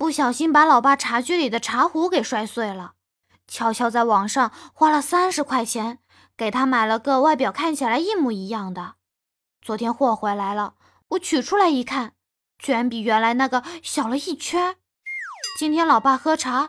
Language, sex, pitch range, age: Chinese, female, 220-310 Hz, 20-39